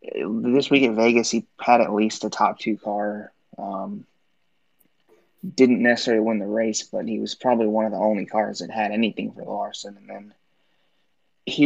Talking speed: 180 wpm